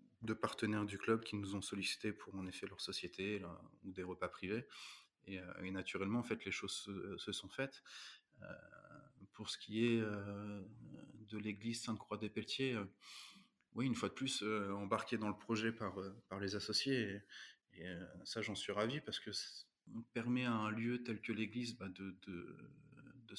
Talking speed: 190 wpm